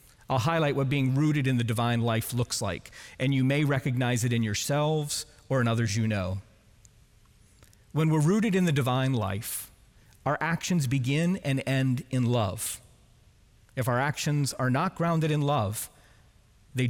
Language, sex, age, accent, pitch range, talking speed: English, male, 40-59, American, 120-165 Hz, 165 wpm